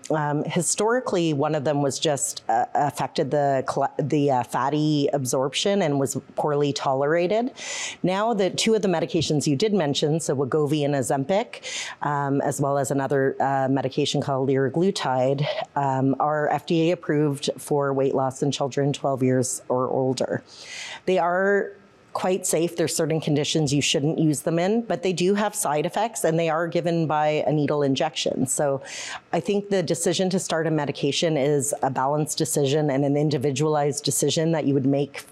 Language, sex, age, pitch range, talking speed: English, female, 30-49, 140-175 Hz, 170 wpm